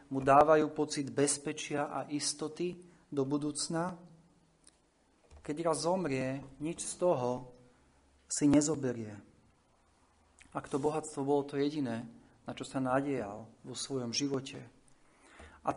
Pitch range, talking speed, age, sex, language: 125-155 Hz, 115 wpm, 40-59, male, Slovak